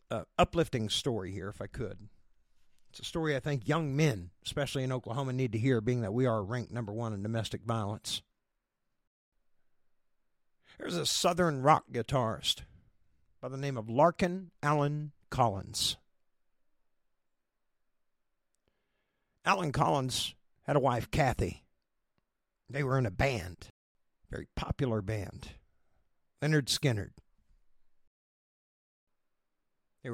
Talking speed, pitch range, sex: 115 wpm, 105-145 Hz, male